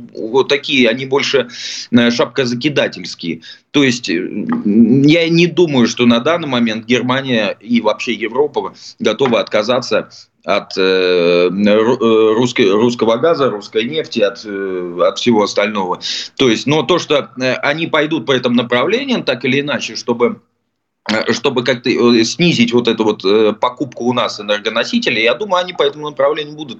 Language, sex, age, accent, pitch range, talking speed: Russian, male, 20-39, native, 105-150 Hz, 130 wpm